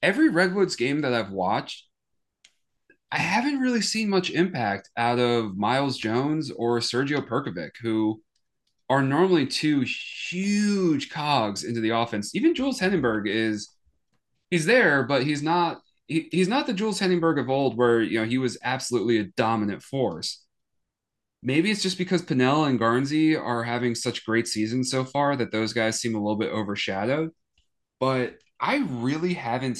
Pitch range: 110-155 Hz